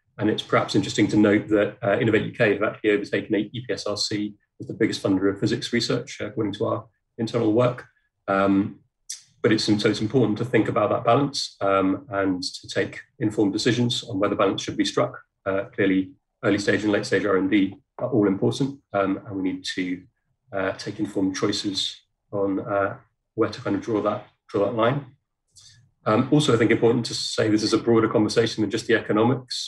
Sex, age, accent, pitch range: male, 30-49, British, 100-120 Hz